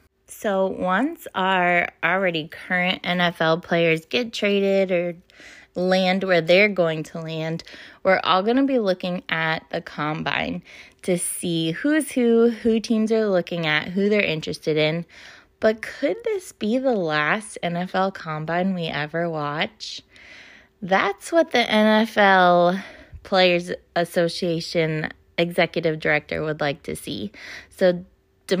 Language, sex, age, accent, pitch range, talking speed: English, female, 20-39, American, 165-210 Hz, 130 wpm